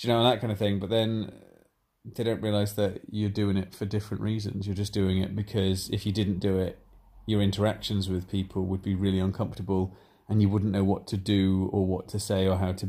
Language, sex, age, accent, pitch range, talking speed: English, male, 30-49, British, 95-105 Hz, 235 wpm